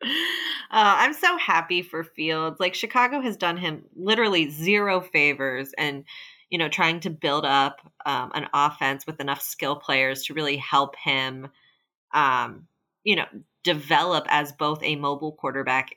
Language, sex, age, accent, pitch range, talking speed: English, female, 20-39, American, 145-185 Hz, 155 wpm